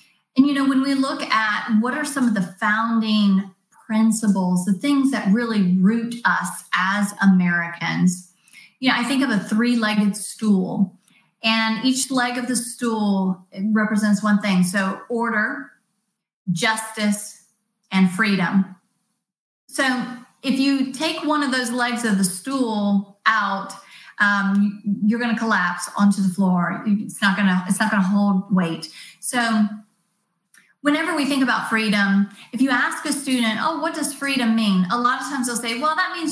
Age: 30-49